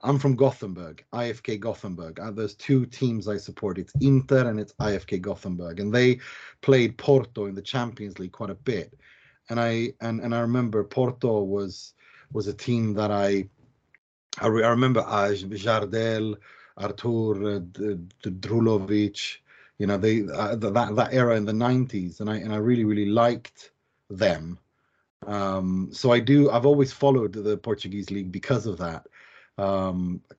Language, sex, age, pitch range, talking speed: Portuguese, male, 30-49, 100-125 Hz, 170 wpm